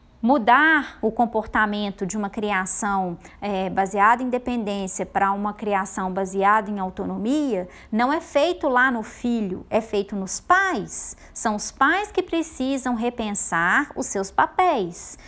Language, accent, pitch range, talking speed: Portuguese, Brazilian, 205-275 Hz, 140 wpm